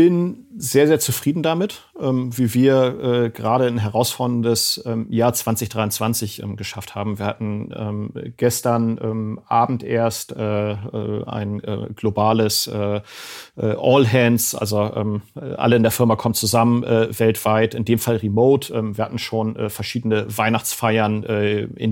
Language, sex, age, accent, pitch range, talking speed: German, male, 40-59, German, 105-120 Hz, 110 wpm